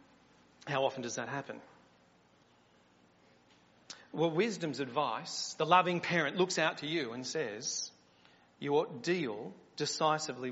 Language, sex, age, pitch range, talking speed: English, male, 40-59, 140-220 Hz, 125 wpm